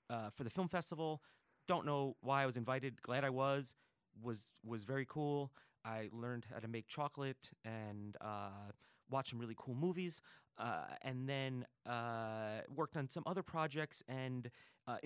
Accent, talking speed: American, 165 wpm